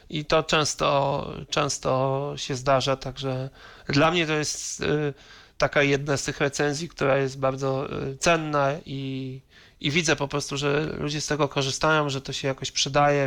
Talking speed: 160 wpm